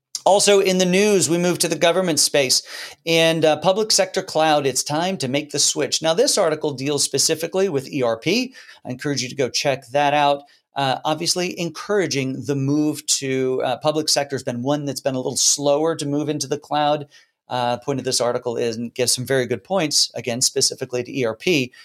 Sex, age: male, 40-59